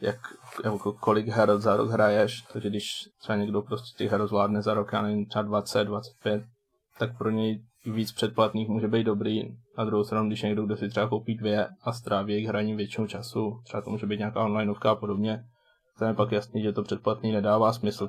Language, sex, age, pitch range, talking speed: Czech, male, 20-39, 105-115 Hz, 195 wpm